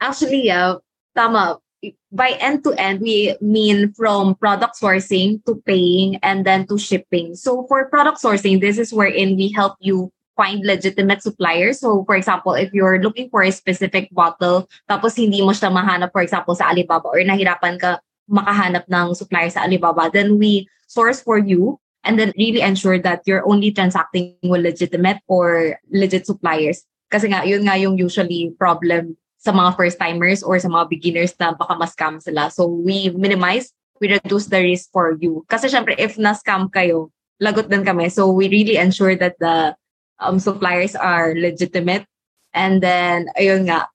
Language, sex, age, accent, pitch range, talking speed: Filipino, female, 20-39, native, 180-205 Hz, 165 wpm